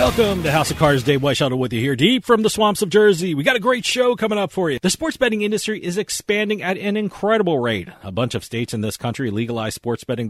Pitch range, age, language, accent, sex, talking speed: 120-200 Hz, 40-59, English, American, male, 260 wpm